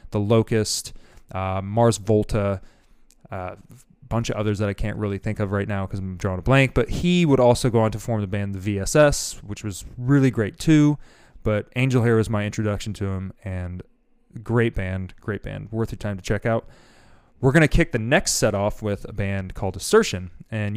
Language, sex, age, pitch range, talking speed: English, male, 20-39, 105-130 Hz, 210 wpm